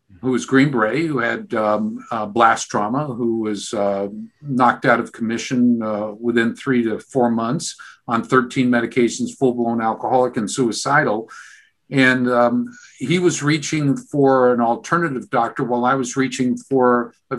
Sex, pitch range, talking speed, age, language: male, 115-135 Hz, 150 wpm, 50-69, English